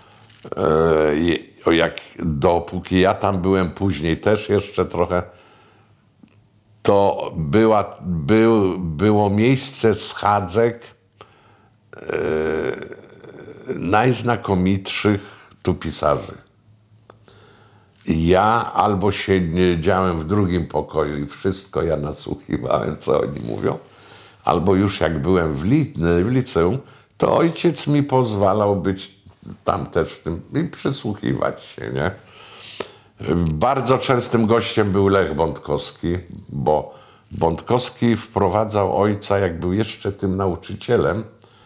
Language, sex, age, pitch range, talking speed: Polish, male, 60-79, 90-115 Hz, 90 wpm